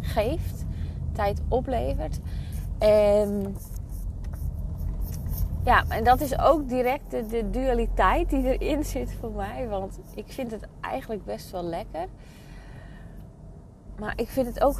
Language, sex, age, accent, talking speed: Dutch, female, 20-39, Dutch, 125 wpm